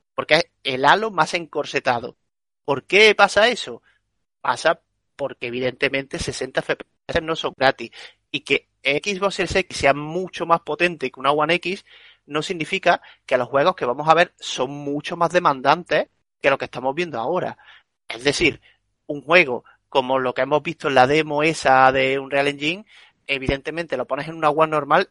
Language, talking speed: Spanish, 175 wpm